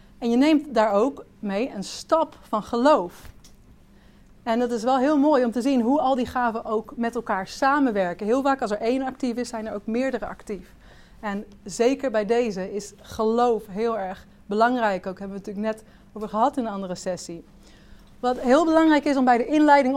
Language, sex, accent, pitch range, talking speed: Dutch, female, Dutch, 210-265 Hz, 200 wpm